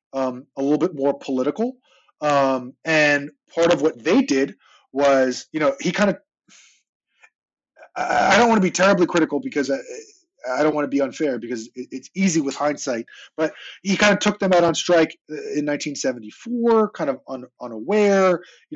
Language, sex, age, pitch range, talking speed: English, male, 20-39, 130-170 Hz, 180 wpm